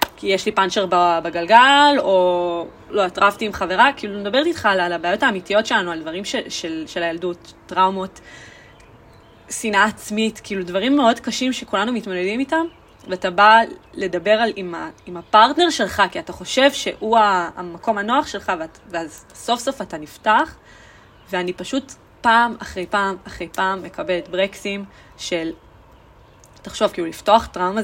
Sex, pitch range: female, 175-225 Hz